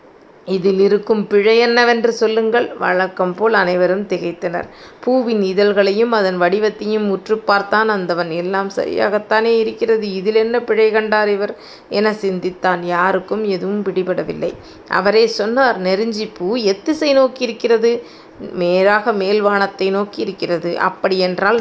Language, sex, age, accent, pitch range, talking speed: Tamil, female, 30-49, native, 190-225 Hz, 105 wpm